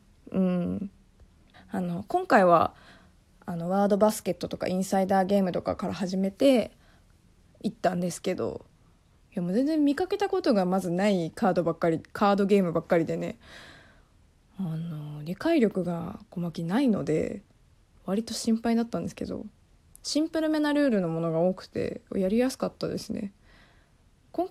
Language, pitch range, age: Japanese, 175-235 Hz, 20-39